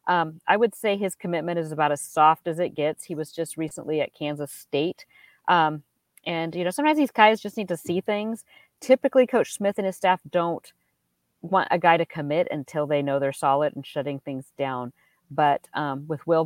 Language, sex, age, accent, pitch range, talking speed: English, female, 40-59, American, 145-170 Hz, 210 wpm